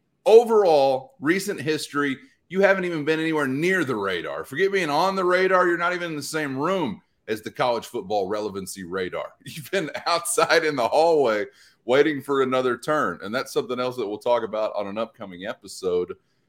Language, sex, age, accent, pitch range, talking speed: English, male, 30-49, American, 105-160 Hz, 185 wpm